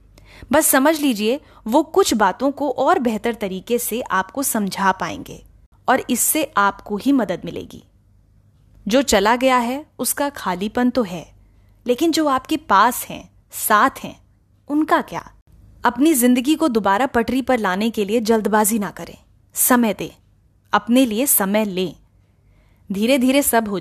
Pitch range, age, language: 195-255 Hz, 20-39, Hindi